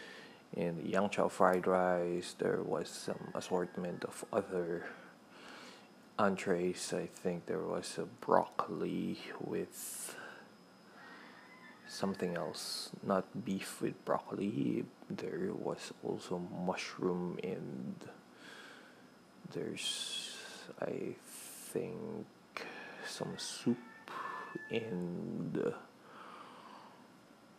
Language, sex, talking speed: Filipino, male, 80 wpm